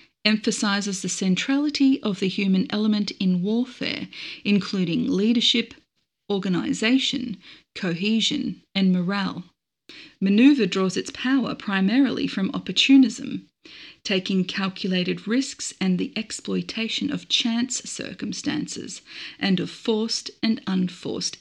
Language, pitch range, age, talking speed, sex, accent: English, 190-245 Hz, 40-59, 100 wpm, female, Australian